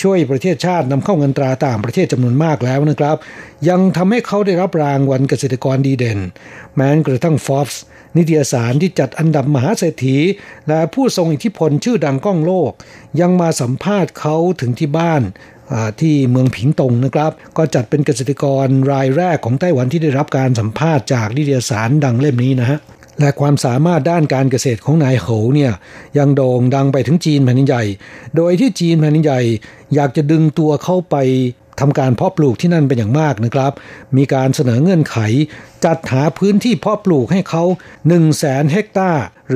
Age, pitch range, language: 60-79, 130-165 Hz, Thai